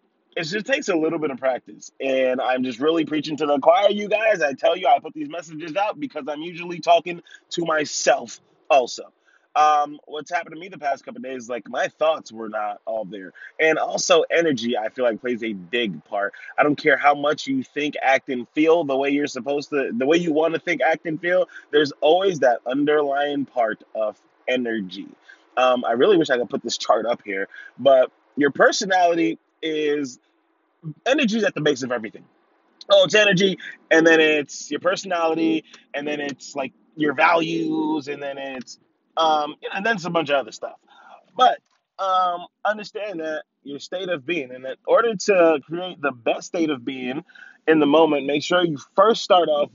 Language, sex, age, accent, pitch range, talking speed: English, male, 20-39, American, 135-175 Hz, 200 wpm